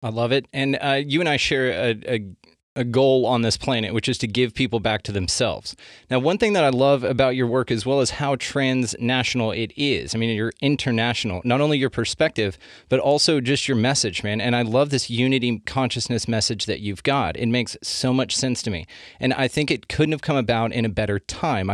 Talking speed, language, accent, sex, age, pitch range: 225 wpm, English, American, male, 30-49, 115-135 Hz